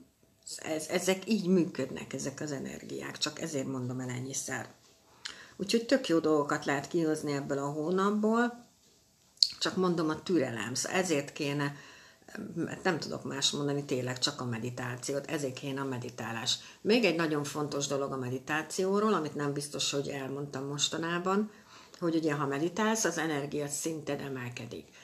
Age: 60-79